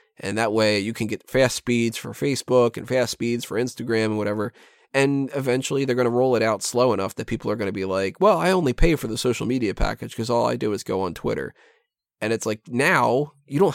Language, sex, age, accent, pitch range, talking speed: English, male, 20-39, American, 110-135 Hz, 250 wpm